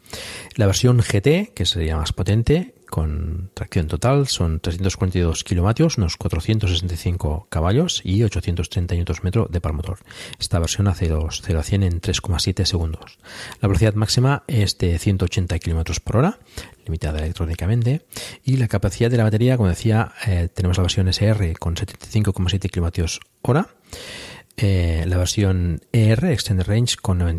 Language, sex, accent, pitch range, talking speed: Spanish, male, Spanish, 90-110 Hz, 145 wpm